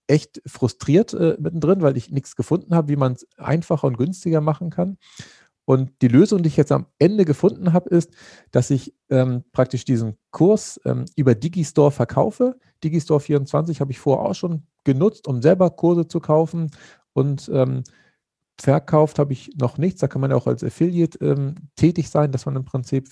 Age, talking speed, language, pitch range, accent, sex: 40-59, 185 wpm, German, 125-155 Hz, German, male